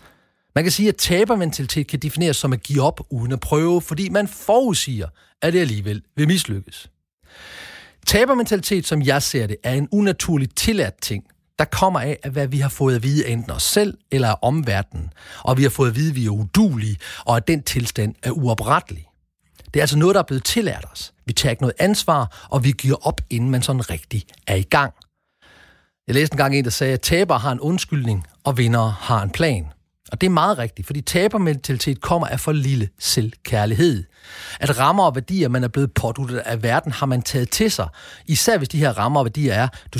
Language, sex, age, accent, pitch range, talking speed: Danish, male, 40-59, native, 115-155 Hz, 210 wpm